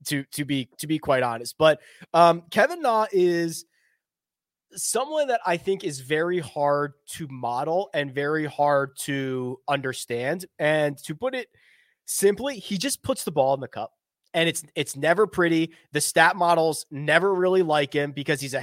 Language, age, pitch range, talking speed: English, 20-39, 145-195 Hz, 175 wpm